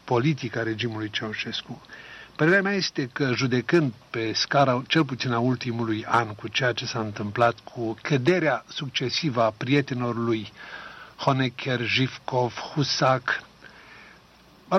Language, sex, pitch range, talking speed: Romanian, male, 120-155 Hz, 120 wpm